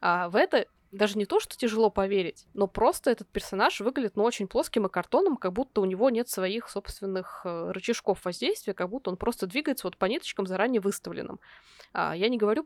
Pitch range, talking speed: 190-220 Hz, 205 wpm